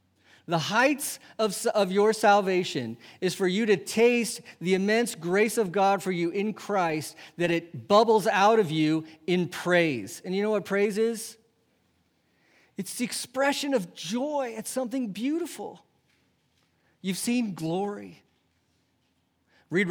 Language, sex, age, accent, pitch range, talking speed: English, male, 40-59, American, 150-220 Hz, 140 wpm